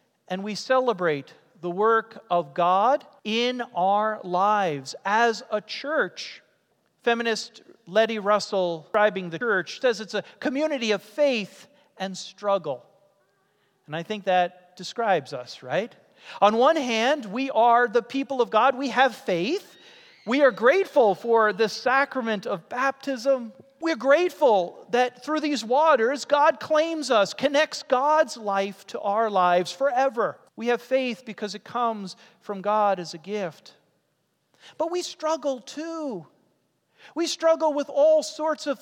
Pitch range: 195-275 Hz